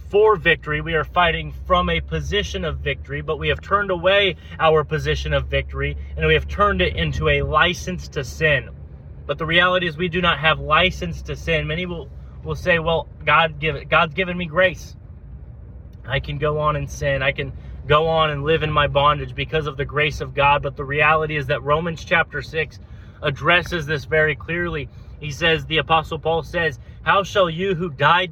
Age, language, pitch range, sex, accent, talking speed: 20-39, English, 130-160 Hz, male, American, 200 wpm